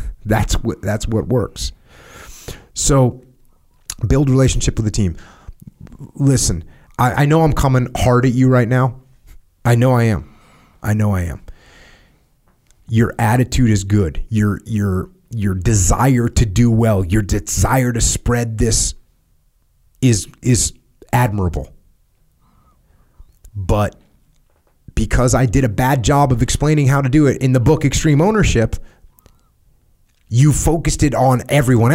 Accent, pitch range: American, 105-130 Hz